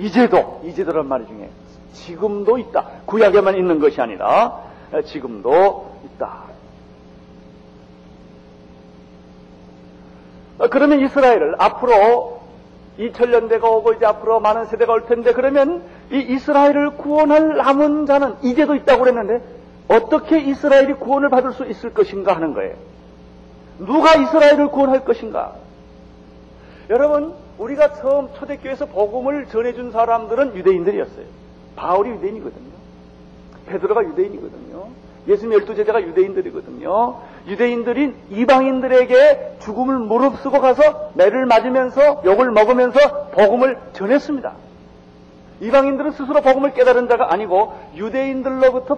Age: 50-69